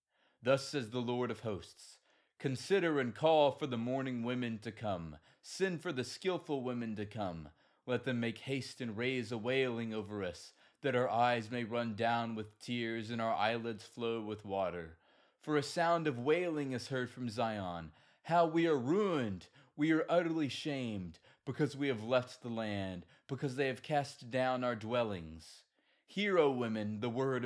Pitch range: 110-140 Hz